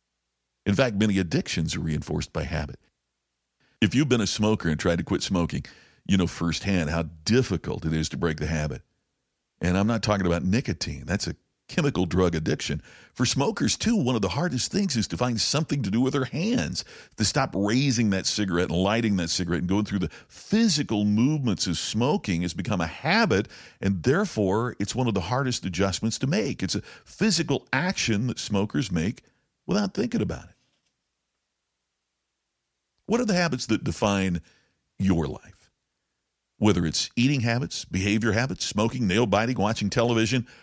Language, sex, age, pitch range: English, male, 50-69, 85-125 Hz